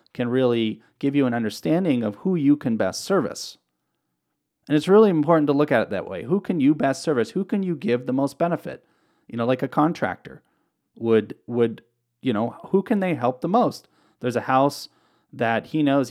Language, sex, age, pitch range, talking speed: English, male, 30-49, 115-155 Hz, 205 wpm